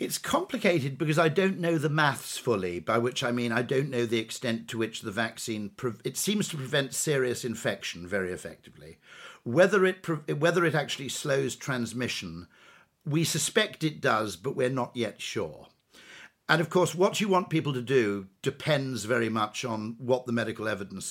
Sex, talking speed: male, 175 wpm